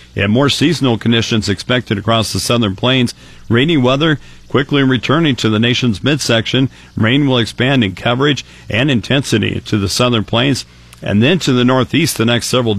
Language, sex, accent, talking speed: English, male, American, 170 wpm